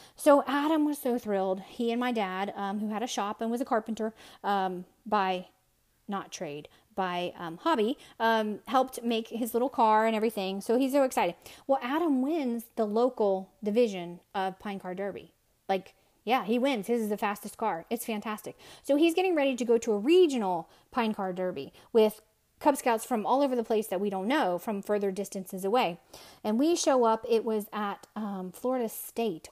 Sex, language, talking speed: female, English, 195 wpm